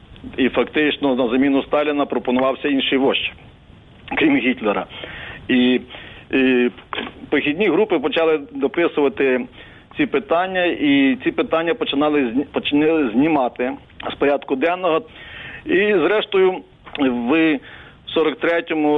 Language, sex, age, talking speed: Ukrainian, male, 50-69, 95 wpm